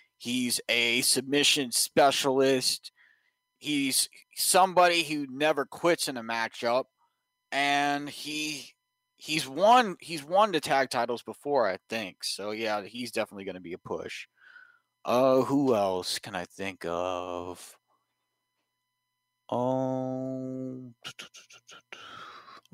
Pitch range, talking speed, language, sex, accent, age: 130-190 Hz, 105 wpm, English, male, American, 30-49